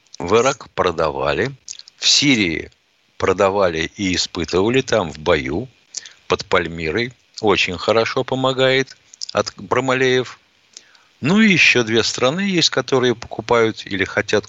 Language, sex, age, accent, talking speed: Russian, male, 50-69, native, 115 wpm